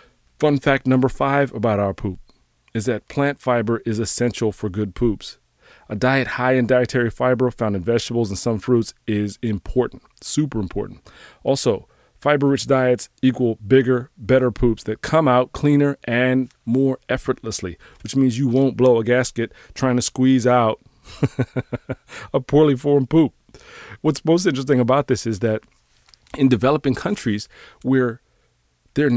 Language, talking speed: English, 150 wpm